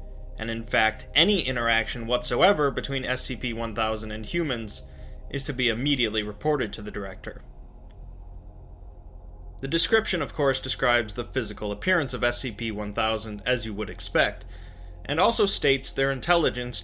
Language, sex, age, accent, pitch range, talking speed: English, male, 20-39, American, 105-140 Hz, 130 wpm